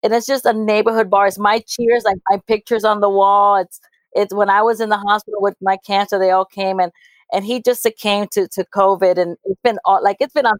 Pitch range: 190-225 Hz